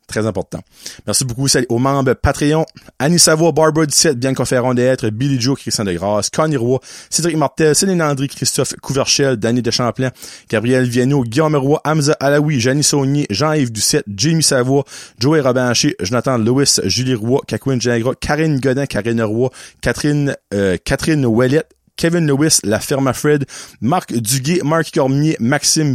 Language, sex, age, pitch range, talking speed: French, male, 30-49, 125-155 Hz, 155 wpm